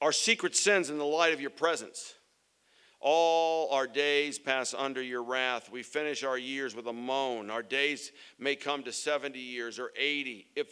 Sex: male